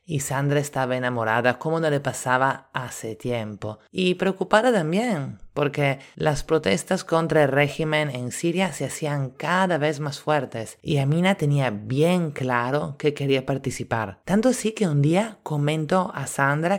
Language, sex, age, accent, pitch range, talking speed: Spanish, male, 30-49, Italian, 125-170 Hz, 155 wpm